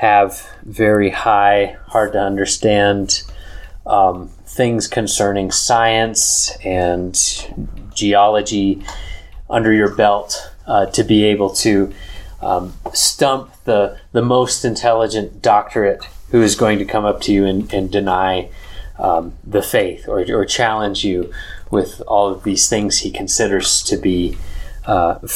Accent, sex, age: American, male, 30-49